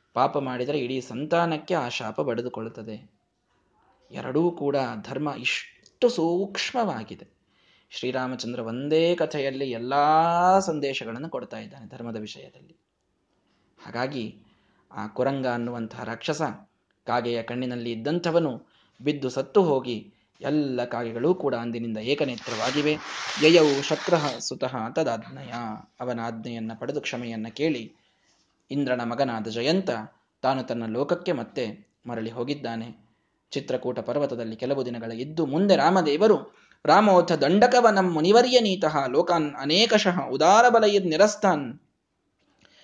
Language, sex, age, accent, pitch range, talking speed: Kannada, male, 20-39, native, 120-175 Hz, 100 wpm